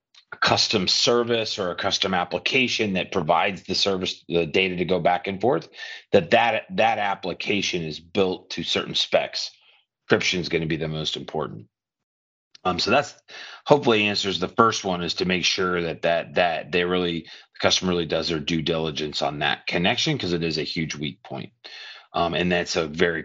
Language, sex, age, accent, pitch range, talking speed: English, male, 40-59, American, 85-115 Hz, 190 wpm